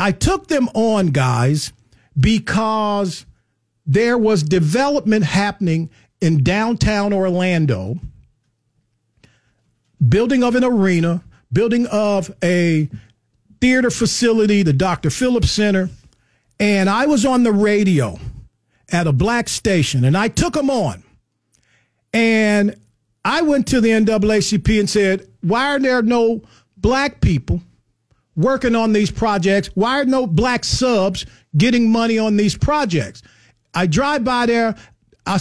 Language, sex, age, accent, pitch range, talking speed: English, male, 50-69, American, 135-220 Hz, 125 wpm